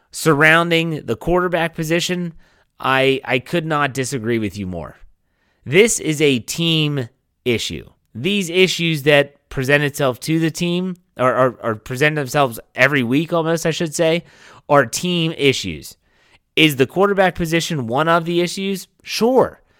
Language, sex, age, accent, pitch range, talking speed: English, male, 30-49, American, 115-165 Hz, 140 wpm